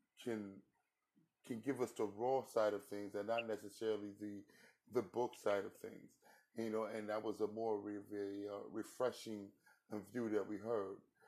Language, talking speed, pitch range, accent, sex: English, 175 wpm, 105-120 Hz, American, male